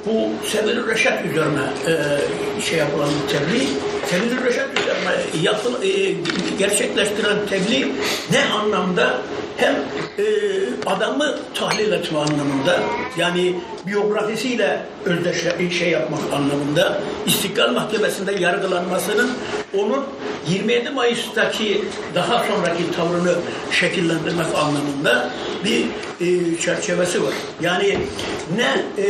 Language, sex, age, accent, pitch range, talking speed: Turkish, male, 60-79, native, 175-235 Hz, 95 wpm